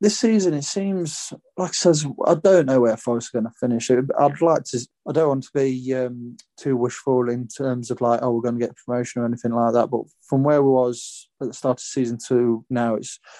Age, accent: 30-49, British